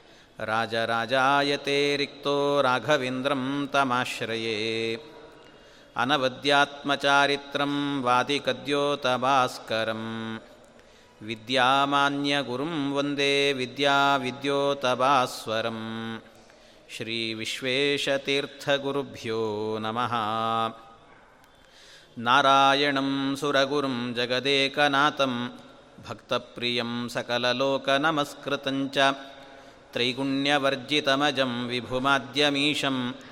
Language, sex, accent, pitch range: Kannada, male, native, 125-145 Hz